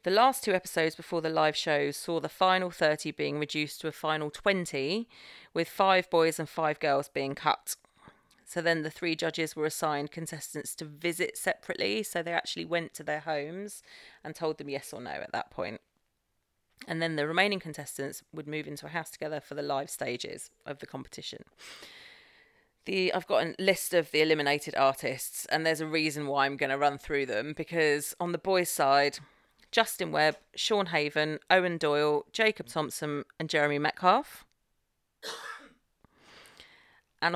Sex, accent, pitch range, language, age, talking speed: female, British, 150-190 Hz, English, 30-49, 175 wpm